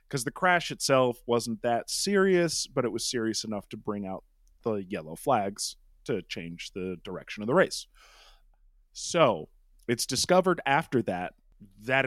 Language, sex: English, male